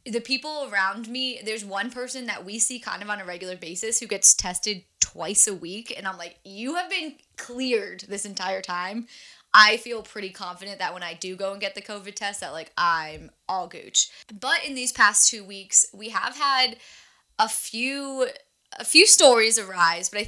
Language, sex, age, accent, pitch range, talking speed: English, female, 20-39, American, 190-250 Hz, 200 wpm